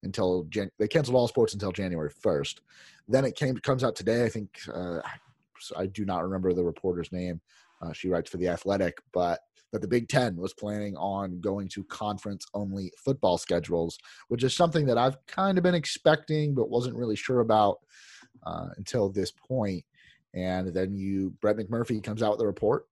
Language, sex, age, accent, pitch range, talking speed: English, male, 30-49, American, 95-125 Hz, 190 wpm